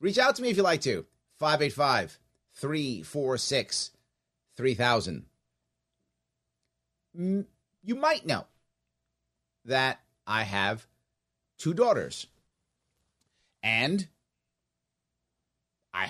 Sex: male